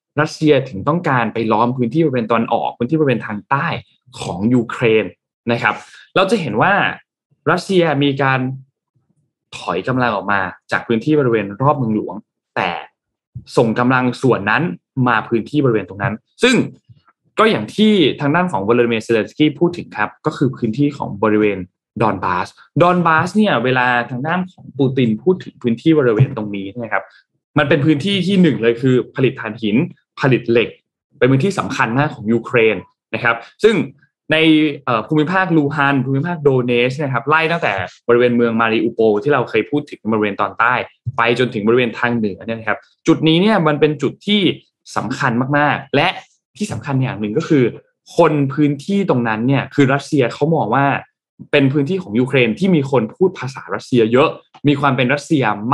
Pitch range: 115-155 Hz